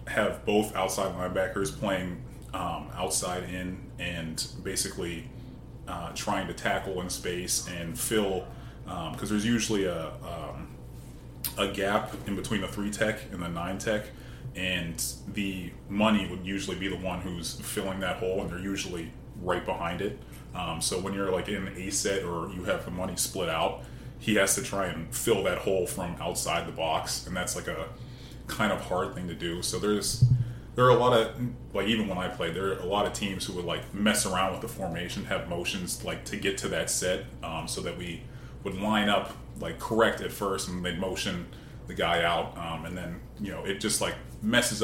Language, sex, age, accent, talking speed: English, male, 30-49, American, 200 wpm